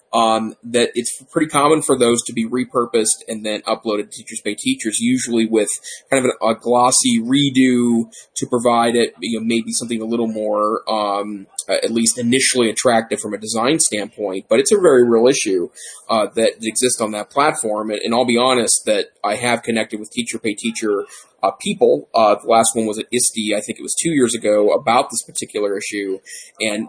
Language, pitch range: English, 110-130 Hz